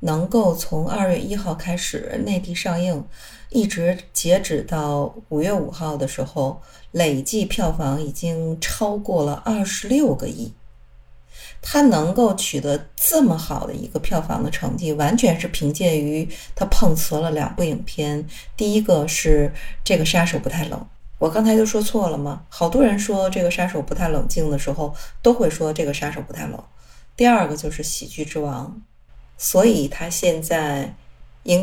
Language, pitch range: Chinese, 145-185 Hz